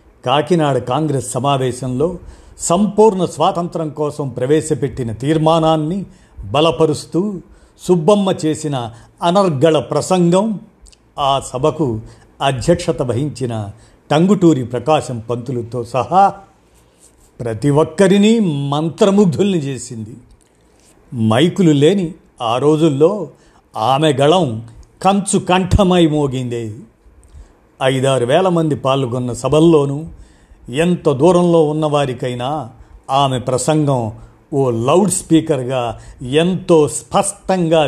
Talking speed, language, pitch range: 75 wpm, Telugu, 125-165 Hz